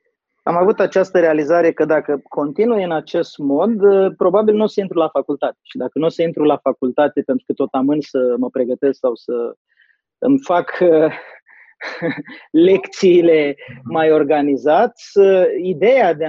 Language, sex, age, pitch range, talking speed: Romanian, male, 30-49, 145-195 Hz, 150 wpm